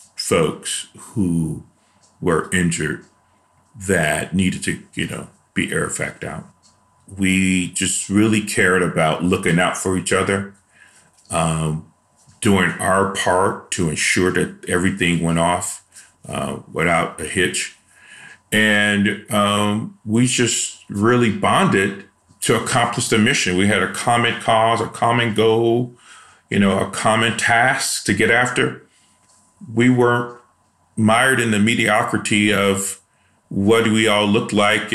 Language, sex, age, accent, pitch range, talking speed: English, male, 40-59, American, 95-110 Hz, 130 wpm